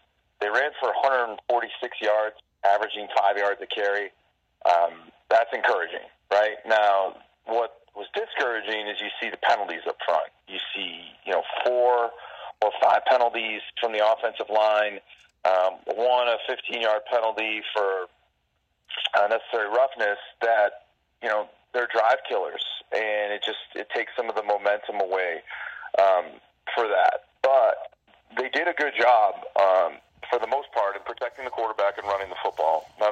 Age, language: 40-59, English